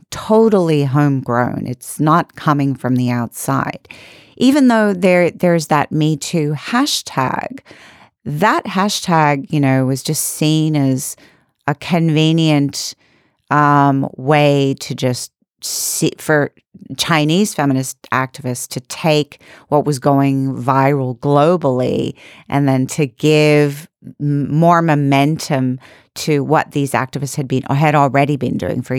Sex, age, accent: female, 40-59, American